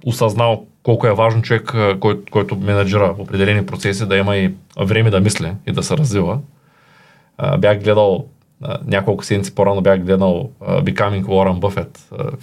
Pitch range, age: 100-145 Hz, 20-39